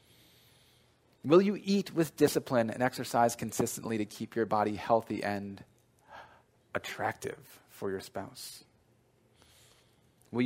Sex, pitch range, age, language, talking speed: male, 105-135 Hz, 30-49, English, 110 wpm